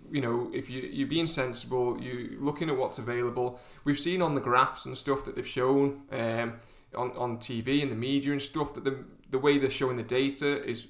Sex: male